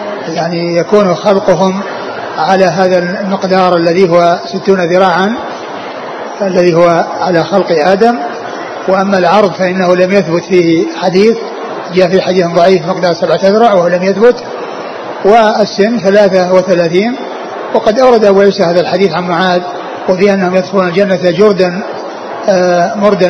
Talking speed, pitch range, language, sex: 125 wpm, 180-205 Hz, Arabic, male